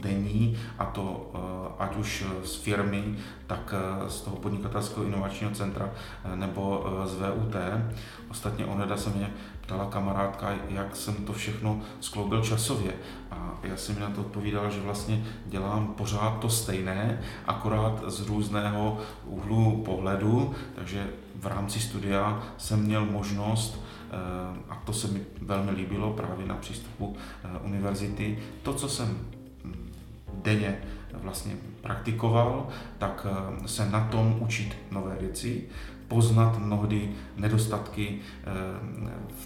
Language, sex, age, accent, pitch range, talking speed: Czech, male, 30-49, native, 100-110 Hz, 120 wpm